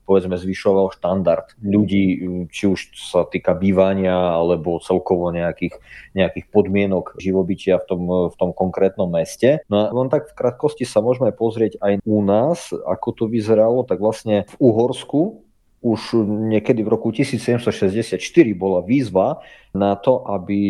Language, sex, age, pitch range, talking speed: Slovak, male, 30-49, 90-110 Hz, 140 wpm